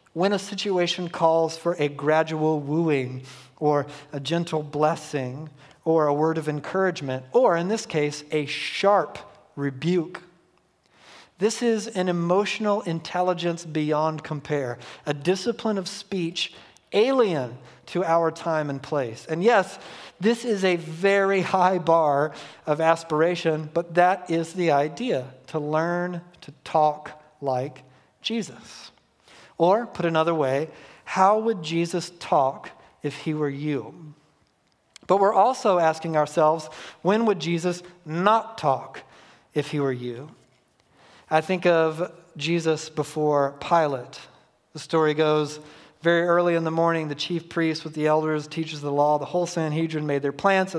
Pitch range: 150-175 Hz